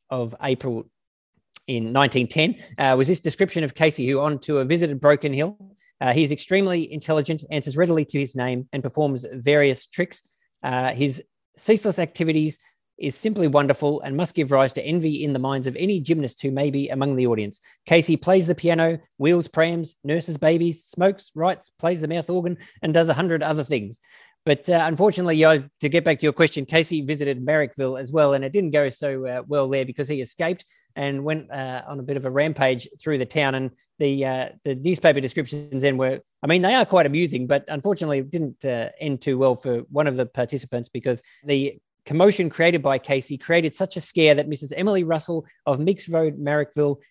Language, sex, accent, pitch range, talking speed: English, male, Australian, 135-165 Hz, 200 wpm